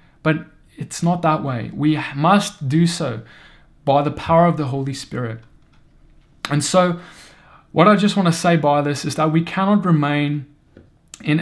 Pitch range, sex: 140-170 Hz, male